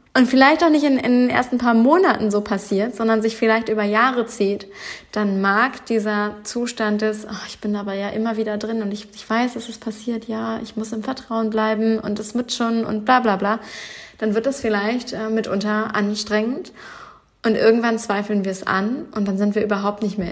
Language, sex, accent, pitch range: German, female, German, 195-225 Hz